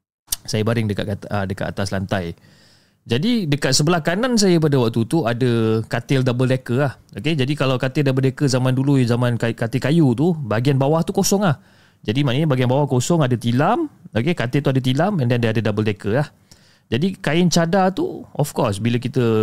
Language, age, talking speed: Malay, 30-49, 190 wpm